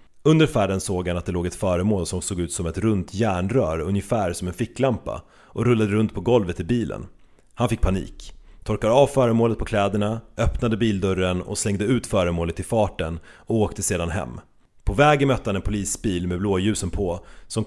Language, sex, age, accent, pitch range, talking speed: Swedish, male, 30-49, native, 90-115 Hz, 195 wpm